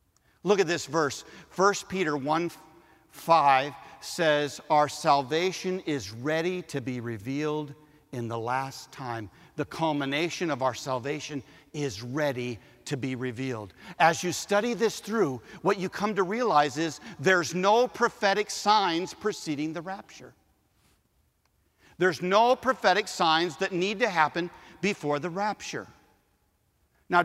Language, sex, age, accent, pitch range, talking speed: English, male, 50-69, American, 155-210 Hz, 130 wpm